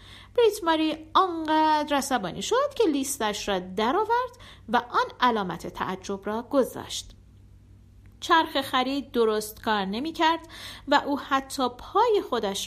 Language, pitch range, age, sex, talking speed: Persian, 215-315 Hz, 50-69, female, 115 wpm